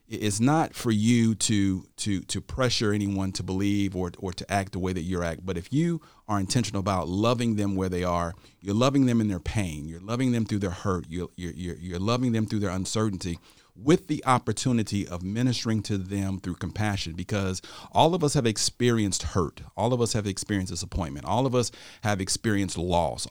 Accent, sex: American, male